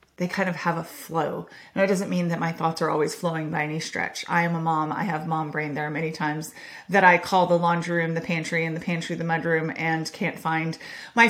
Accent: American